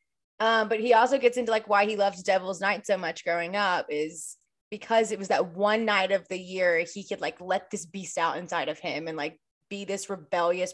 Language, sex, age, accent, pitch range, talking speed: English, female, 20-39, American, 175-225 Hz, 230 wpm